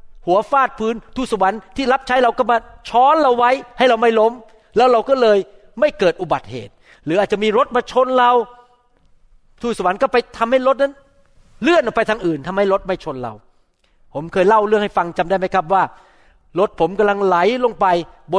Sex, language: male, Thai